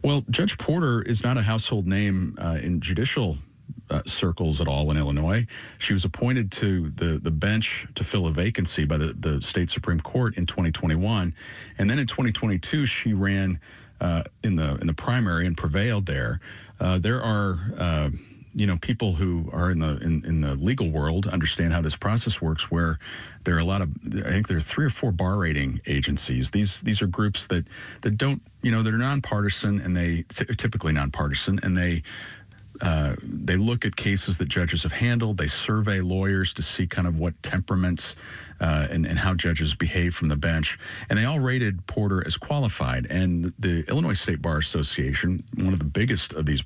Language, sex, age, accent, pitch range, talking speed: English, male, 40-59, American, 80-110 Hz, 195 wpm